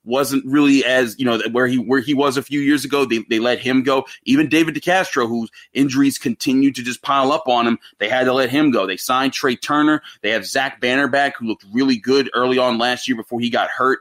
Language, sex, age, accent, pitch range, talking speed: English, male, 30-49, American, 120-145 Hz, 250 wpm